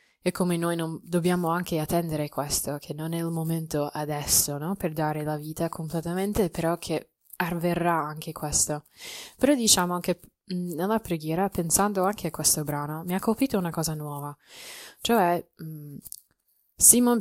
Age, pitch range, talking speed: 20-39, 150-185 Hz, 155 wpm